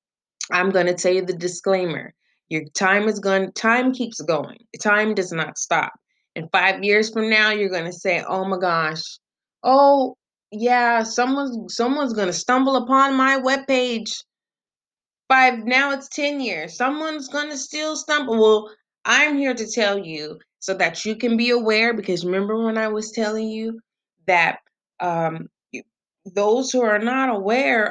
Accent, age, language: American, 20-39, English